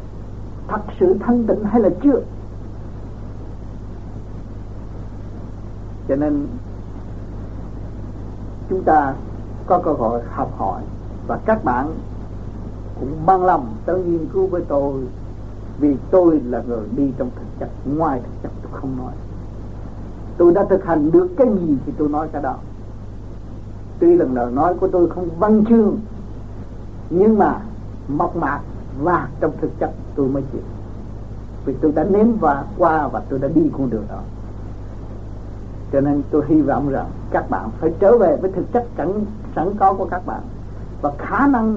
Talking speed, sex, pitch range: 155 wpm, male, 105-160 Hz